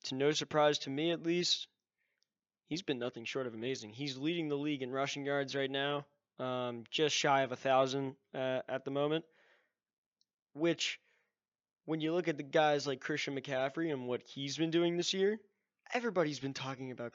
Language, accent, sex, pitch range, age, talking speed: English, American, male, 135-170 Hz, 20-39, 185 wpm